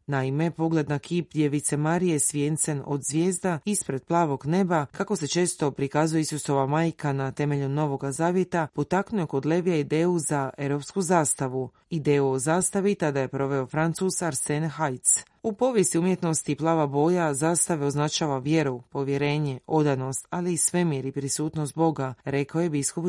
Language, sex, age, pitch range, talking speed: Croatian, female, 30-49, 145-165 Hz, 150 wpm